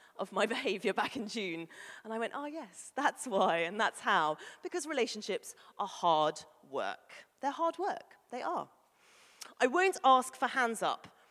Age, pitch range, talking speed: 30-49, 200-290 Hz, 170 wpm